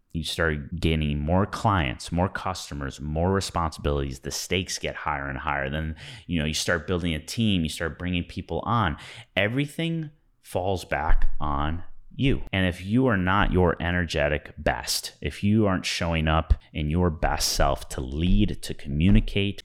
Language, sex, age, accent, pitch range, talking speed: English, male, 30-49, American, 75-100 Hz, 165 wpm